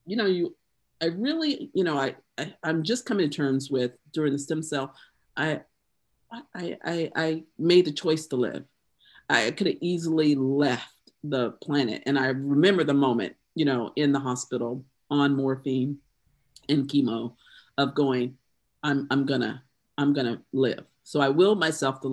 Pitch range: 140-175 Hz